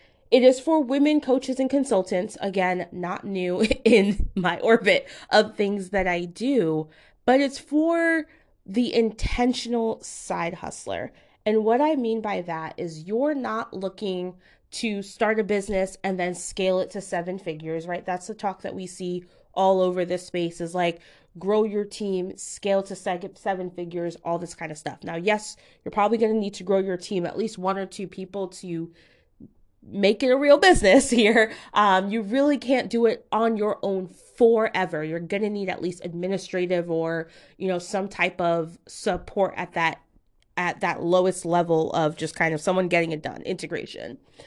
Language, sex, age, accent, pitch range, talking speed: English, female, 20-39, American, 180-230 Hz, 180 wpm